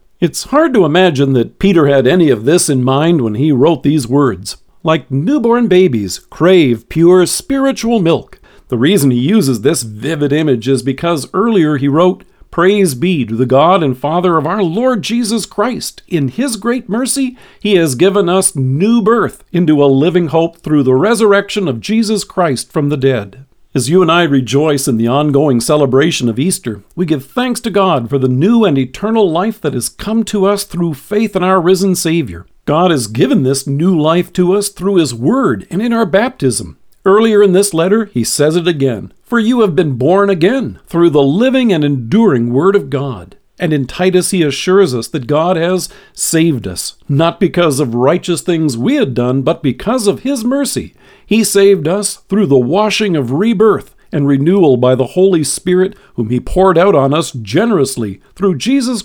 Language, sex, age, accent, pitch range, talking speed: English, male, 50-69, American, 135-200 Hz, 190 wpm